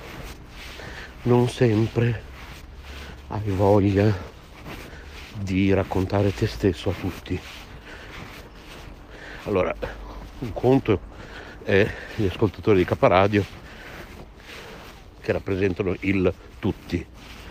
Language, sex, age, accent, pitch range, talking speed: Italian, male, 60-79, native, 90-110 Hz, 75 wpm